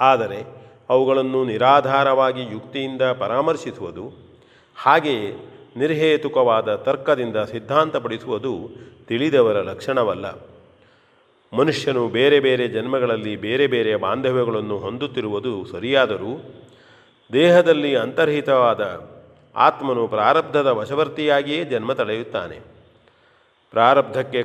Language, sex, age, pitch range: Kannada, male, 40-59, 130-150 Hz